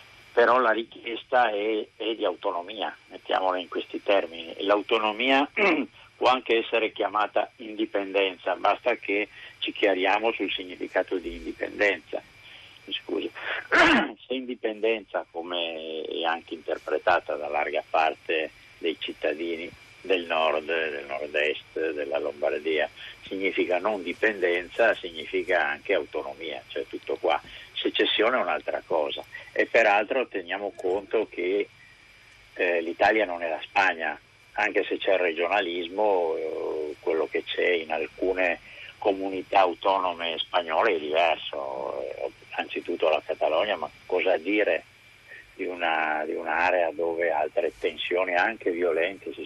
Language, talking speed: Italian, 125 wpm